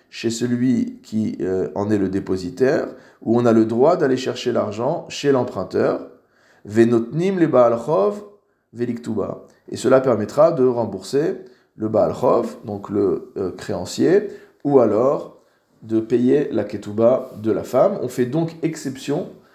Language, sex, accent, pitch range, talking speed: French, male, French, 110-155 Hz, 130 wpm